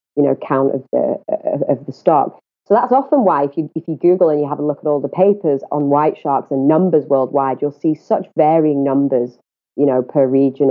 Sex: female